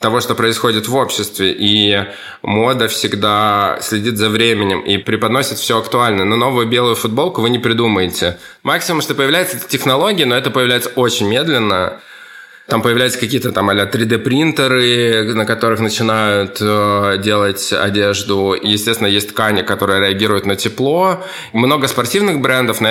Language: Russian